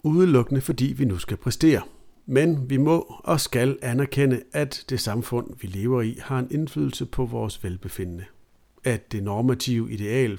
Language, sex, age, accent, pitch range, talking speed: Danish, male, 60-79, native, 110-140 Hz, 160 wpm